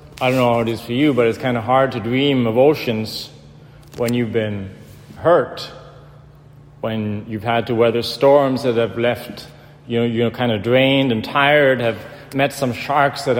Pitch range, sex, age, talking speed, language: 120-140 Hz, male, 40-59, 195 wpm, English